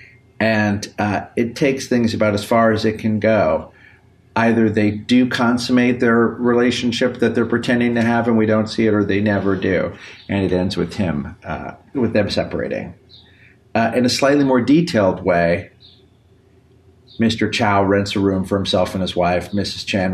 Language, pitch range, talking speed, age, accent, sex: English, 95-115 Hz, 180 wpm, 40-59, American, male